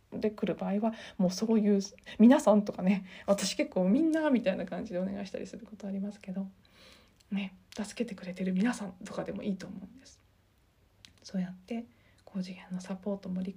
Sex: female